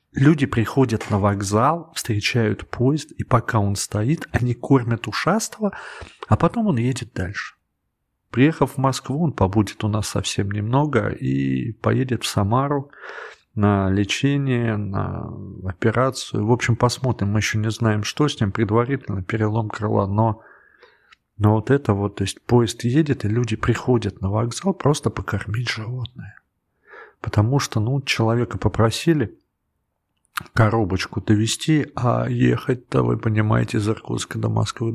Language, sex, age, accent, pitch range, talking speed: Russian, male, 40-59, native, 100-130 Hz, 135 wpm